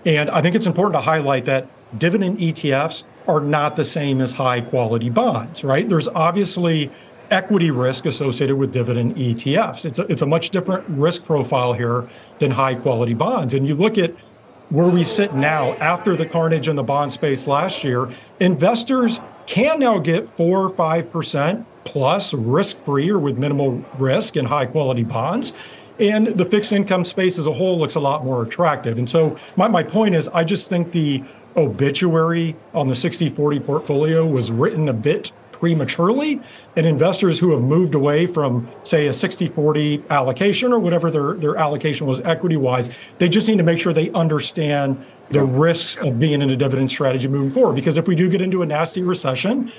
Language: English